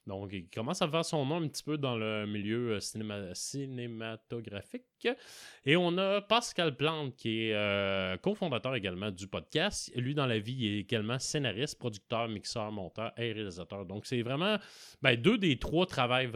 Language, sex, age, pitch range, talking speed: French, male, 30-49, 100-135 Hz, 170 wpm